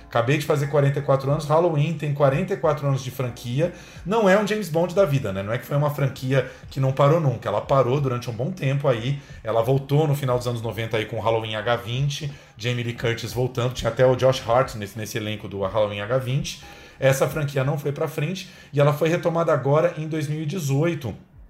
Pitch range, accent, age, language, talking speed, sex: 115-150 Hz, Brazilian, 30-49, Portuguese, 210 wpm, male